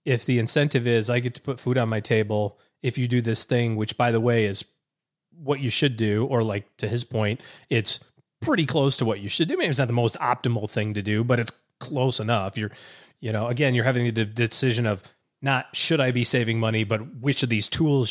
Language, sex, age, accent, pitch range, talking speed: English, male, 30-49, American, 110-140 Hz, 240 wpm